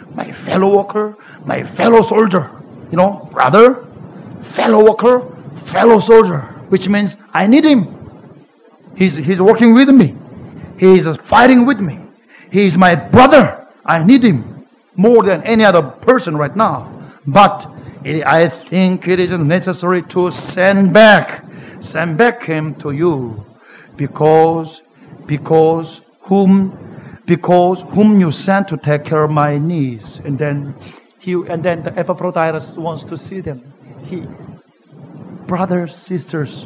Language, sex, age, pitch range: Korean, male, 50-69, 160-200 Hz